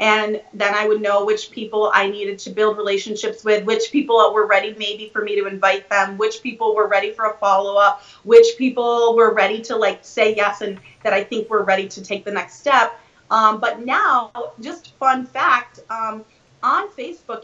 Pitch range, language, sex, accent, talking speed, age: 210-275 Hz, English, female, American, 200 wpm, 30-49